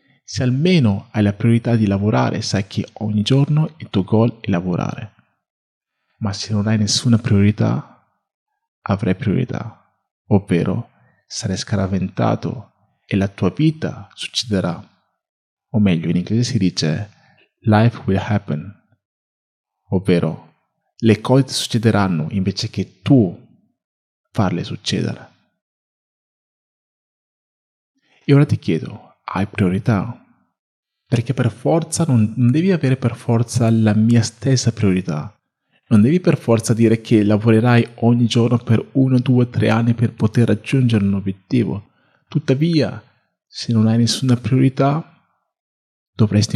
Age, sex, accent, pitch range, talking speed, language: 40-59, male, native, 100-125 Hz, 120 wpm, Italian